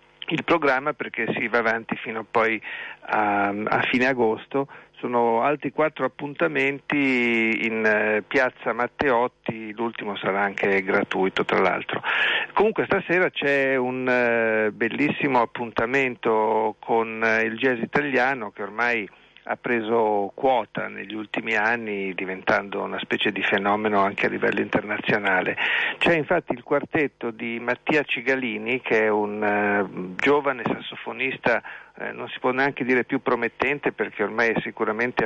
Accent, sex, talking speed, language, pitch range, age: native, male, 125 wpm, Italian, 110-135 Hz, 50-69